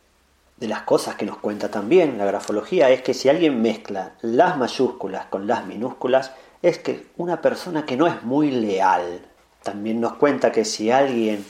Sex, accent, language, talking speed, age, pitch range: male, Argentinian, Spanish, 175 wpm, 40-59, 105-130 Hz